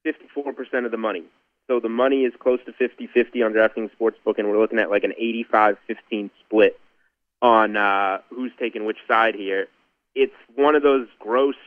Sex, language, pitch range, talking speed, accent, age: male, English, 105-125 Hz, 175 wpm, American, 30-49